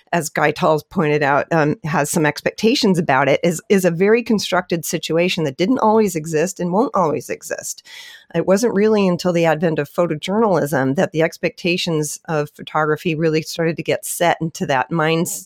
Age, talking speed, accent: 40-59, 180 wpm, American